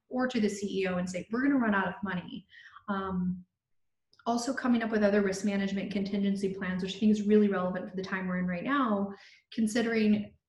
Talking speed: 210 wpm